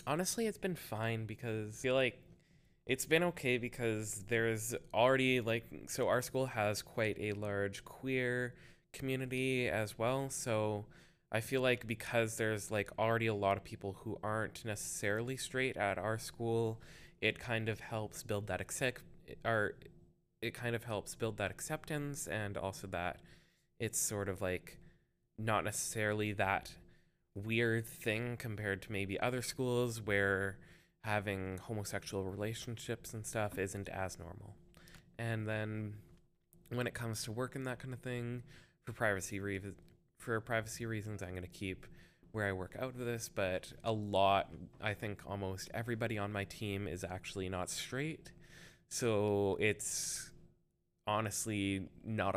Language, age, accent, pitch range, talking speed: English, 20-39, American, 100-125 Hz, 150 wpm